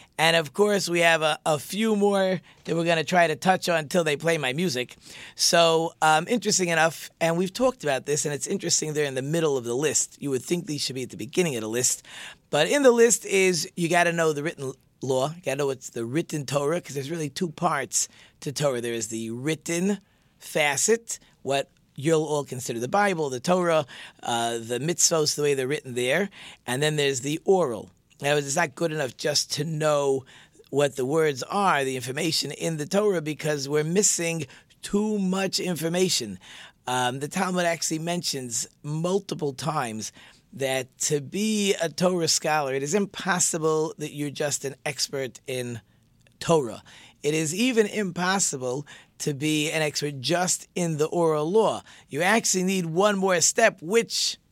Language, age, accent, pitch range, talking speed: English, 40-59, American, 140-180 Hz, 190 wpm